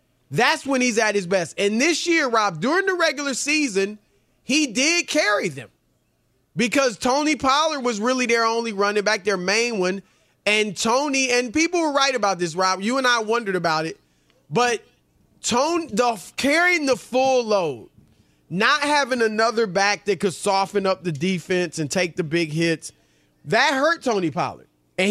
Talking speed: 165 wpm